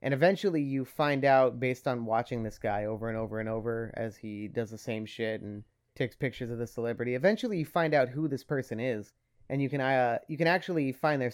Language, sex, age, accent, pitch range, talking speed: English, male, 30-49, American, 115-145 Hz, 235 wpm